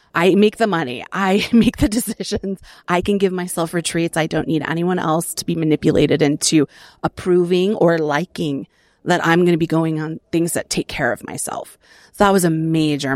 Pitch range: 155-185 Hz